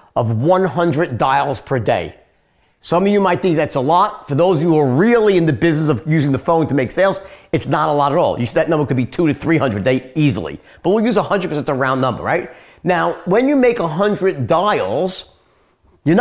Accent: American